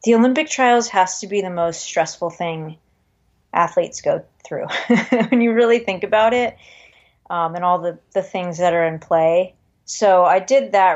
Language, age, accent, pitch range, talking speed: English, 30-49, American, 165-200 Hz, 180 wpm